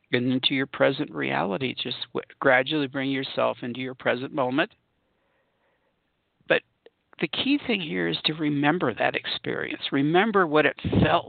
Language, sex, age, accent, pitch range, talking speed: English, male, 60-79, American, 135-195 Hz, 145 wpm